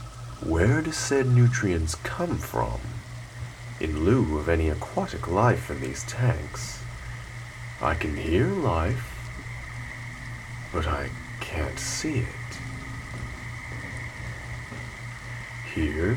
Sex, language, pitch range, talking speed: male, English, 105-125 Hz, 95 wpm